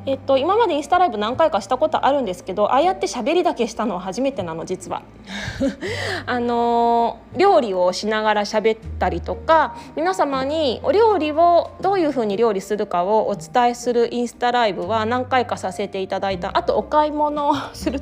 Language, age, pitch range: Japanese, 20-39, 200-290 Hz